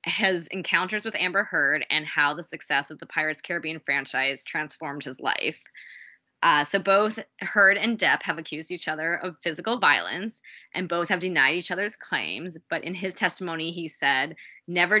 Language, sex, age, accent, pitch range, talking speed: English, female, 20-39, American, 155-190 Hz, 175 wpm